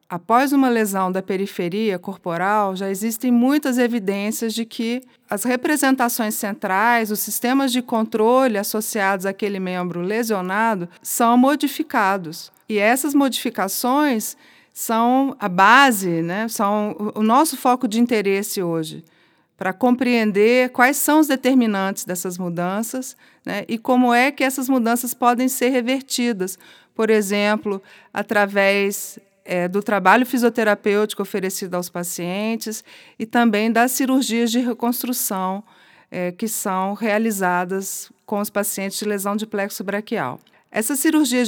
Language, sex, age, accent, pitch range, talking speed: Portuguese, female, 40-59, Brazilian, 195-245 Hz, 125 wpm